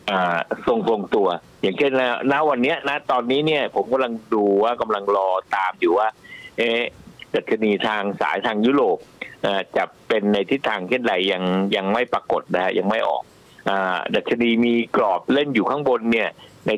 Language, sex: Thai, male